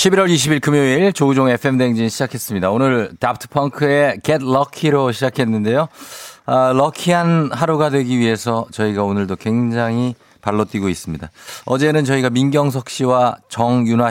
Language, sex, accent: Korean, male, native